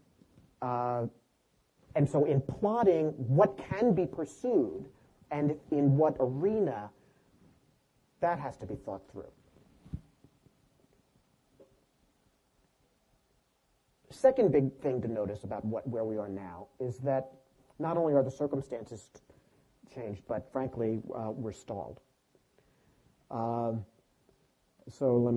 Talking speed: 110 wpm